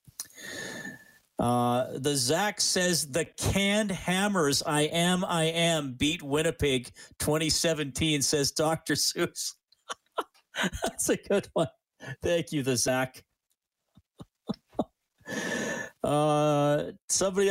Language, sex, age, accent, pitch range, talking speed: English, male, 40-59, American, 150-210 Hz, 95 wpm